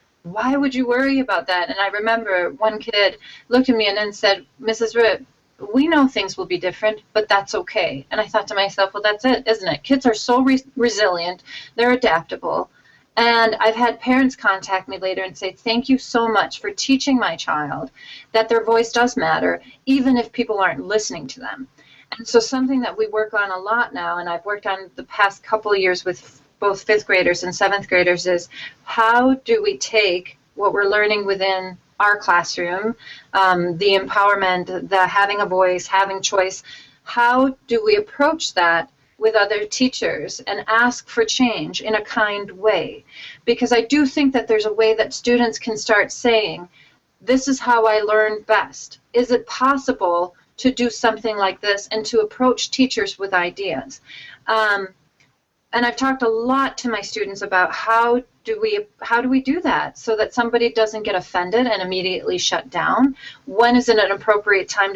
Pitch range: 195-240 Hz